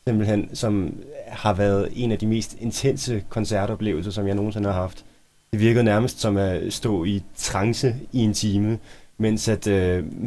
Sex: male